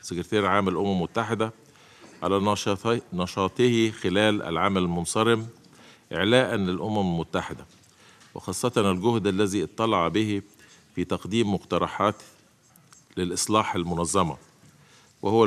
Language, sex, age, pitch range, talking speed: Arabic, male, 50-69, 90-110 Hz, 90 wpm